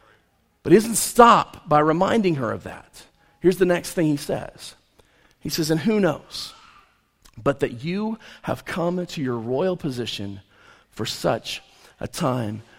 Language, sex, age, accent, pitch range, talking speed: English, male, 40-59, American, 150-250 Hz, 155 wpm